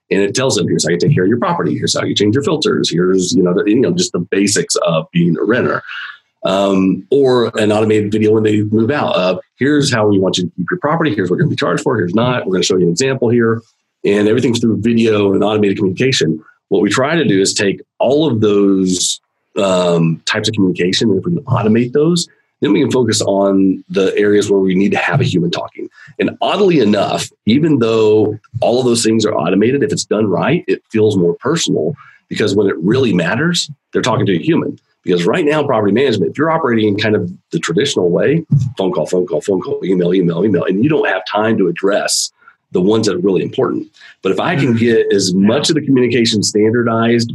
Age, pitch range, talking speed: 40-59, 95-120 Hz, 235 wpm